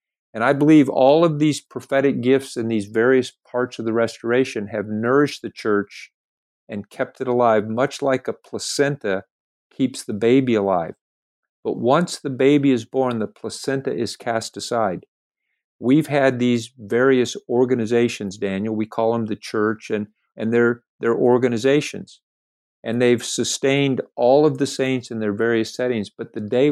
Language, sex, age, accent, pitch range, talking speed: English, male, 50-69, American, 110-130 Hz, 160 wpm